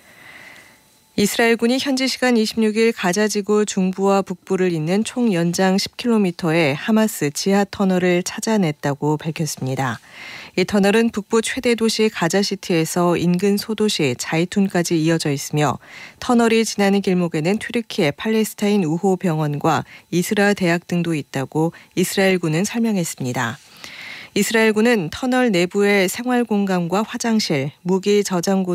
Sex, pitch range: female, 170-215 Hz